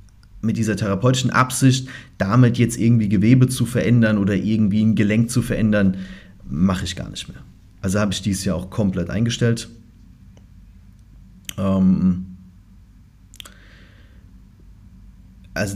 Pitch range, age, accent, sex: 95-110 Hz, 30-49, German, male